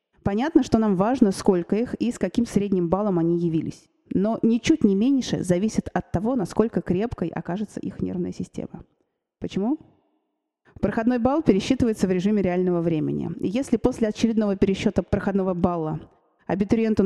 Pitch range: 175-220 Hz